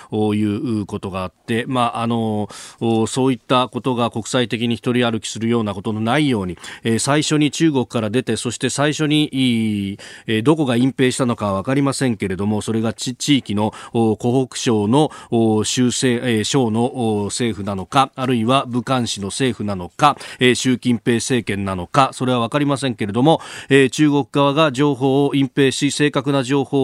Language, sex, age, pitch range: Japanese, male, 40-59, 110-140 Hz